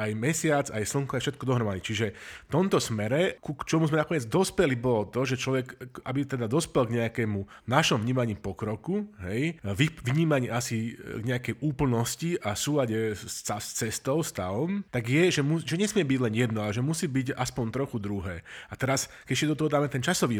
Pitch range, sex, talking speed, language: 115-150 Hz, male, 180 wpm, Slovak